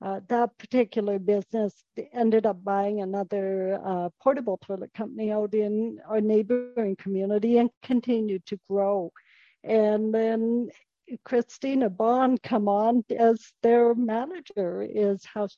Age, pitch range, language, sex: 60-79, 205-245 Hz, English, female